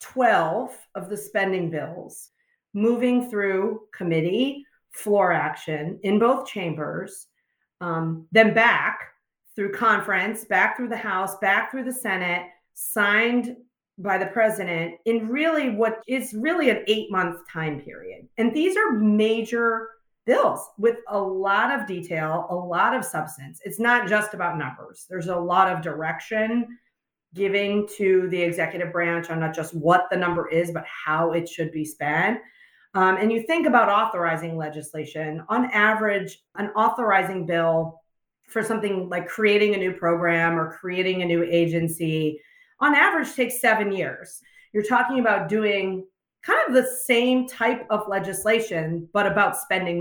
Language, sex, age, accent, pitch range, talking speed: English, female, 40-59, American, 170-230 Hz, 150 wpm